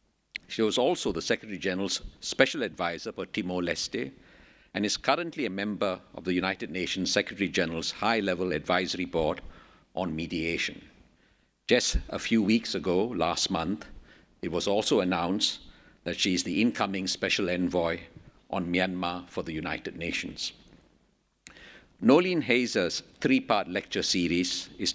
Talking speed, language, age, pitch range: 140 wpm, English, 50-69, 90-115 Hz